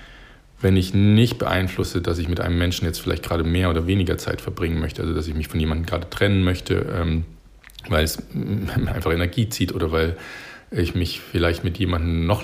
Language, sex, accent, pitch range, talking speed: German, male, German, 85-100 Hz, 195 wpm